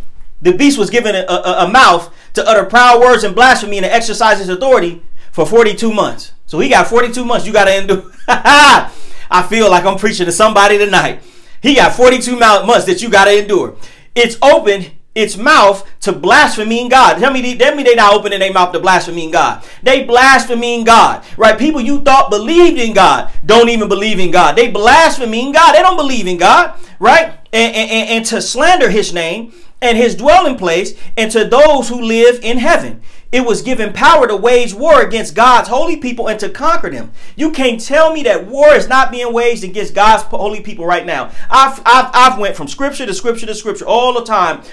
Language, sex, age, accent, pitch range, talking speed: English, male, 30-49, American, 205-265 Hz, 205 wpm